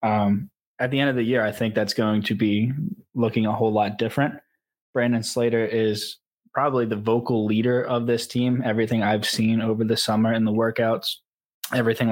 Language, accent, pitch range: English, American, 110-125 Hz